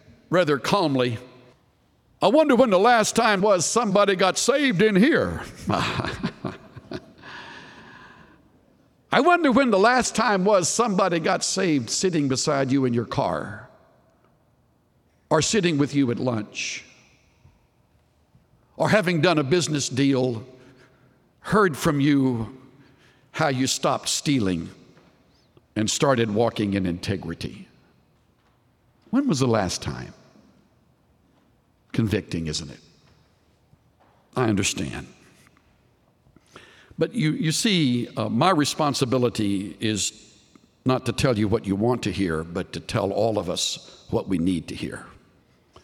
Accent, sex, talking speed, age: American, male, 120 wpm, 60-79